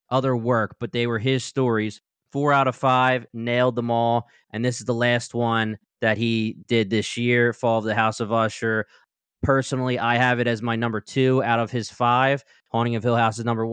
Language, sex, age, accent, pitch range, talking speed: English, male, 20-39, American, 115-130 Hz, 215 wpm